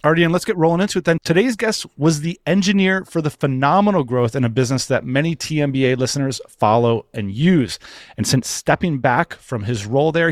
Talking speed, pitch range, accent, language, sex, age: 200 wpm, 110-150 Hz, American, English, male, 30-49